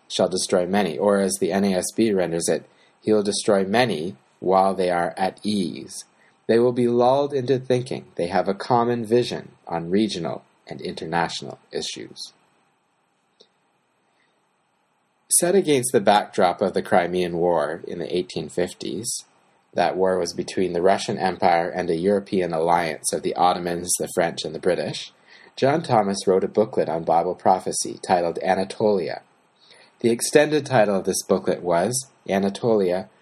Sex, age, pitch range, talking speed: male, 30-49, 100-130 Hz, 145 wpm